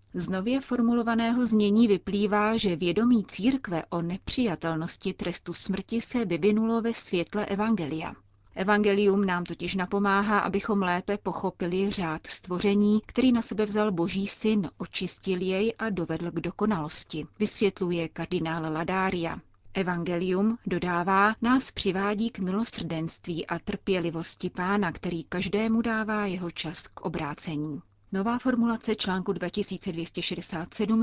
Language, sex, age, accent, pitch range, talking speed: Czech, female, 30-49, native, 170-210 Hz, 115 wpm